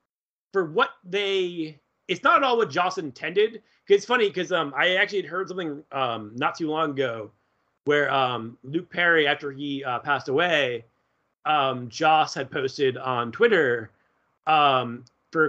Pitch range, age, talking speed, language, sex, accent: 130-175 Hz, 30-49, 160 wpm, English, male, American